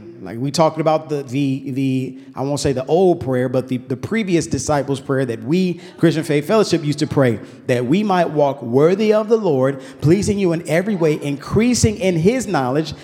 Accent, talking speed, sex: American, 200 wpm, male